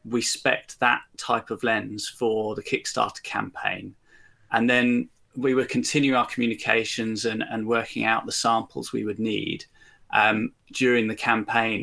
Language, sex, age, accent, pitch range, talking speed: English, male, 30-49, British, 110-130 Hz, 150 wpm